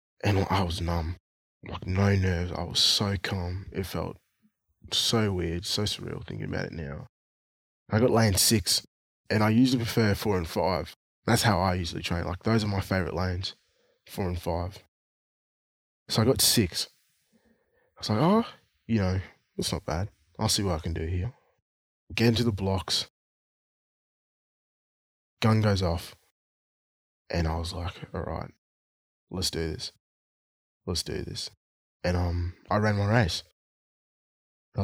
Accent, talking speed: Australian, 160 wpm